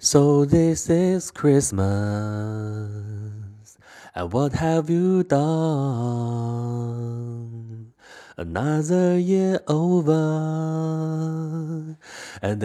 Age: 30-49